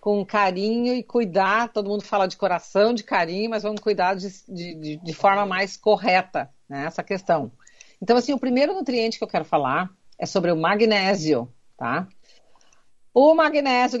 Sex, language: female, Portuguese